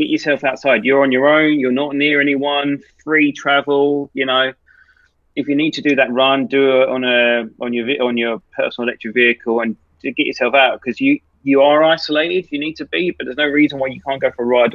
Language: English